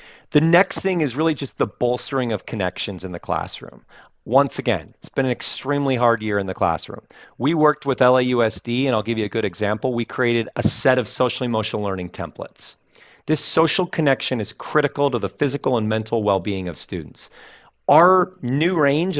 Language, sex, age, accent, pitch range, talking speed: English, male, 40-59, American, 115-155 Hz, 185 wpm